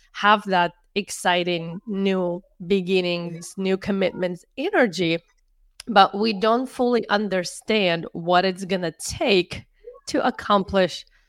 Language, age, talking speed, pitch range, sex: English, 30-49, 100 wpm, 180-220 Hz, female